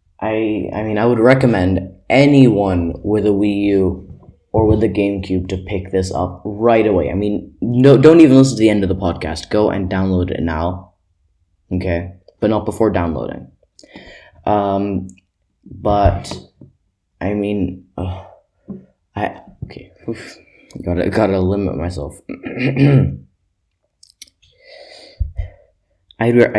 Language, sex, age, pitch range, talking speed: English, male, 20-39, 90-110 Hz, 125 wpm